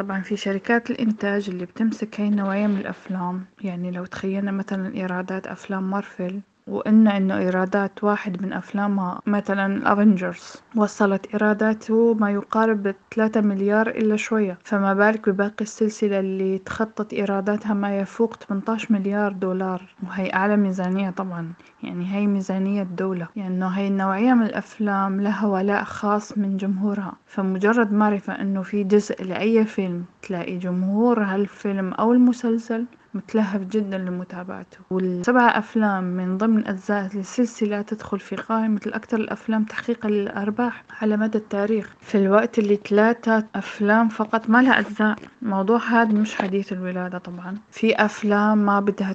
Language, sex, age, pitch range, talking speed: Arabic, female, 20-39, 190-215 Hz, 140 wpm